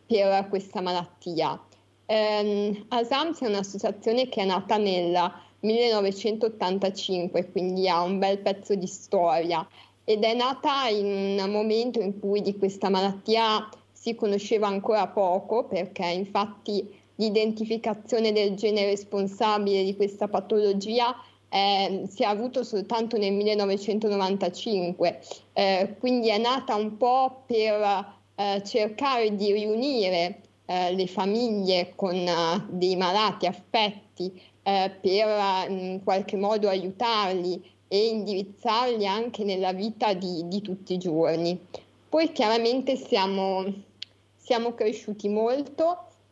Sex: female